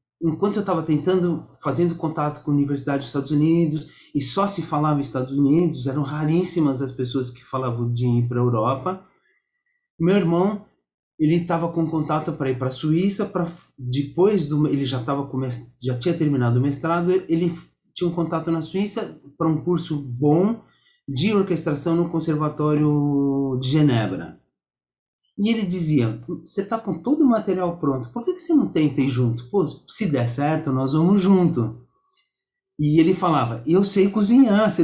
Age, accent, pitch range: 30-49, Brazilian, 140-195 Hz